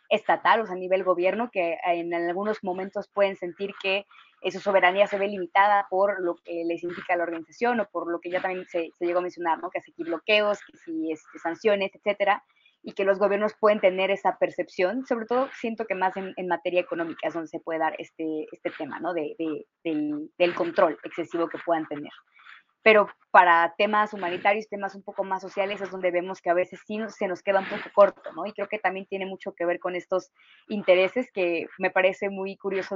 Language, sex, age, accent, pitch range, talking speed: Spanish, female, 20-39, Mexican, 175-200 Hz, 220 wpm